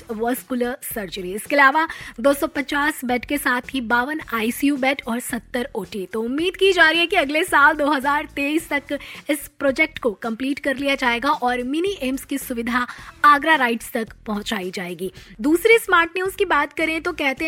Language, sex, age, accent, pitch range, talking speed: Hindi, female, 20-39, native, 235-295 Hz, 175 wpm